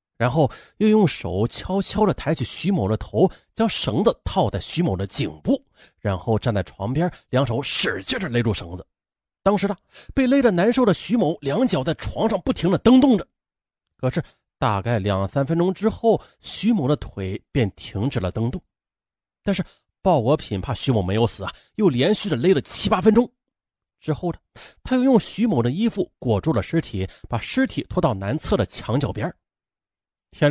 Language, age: Chinese, 30-49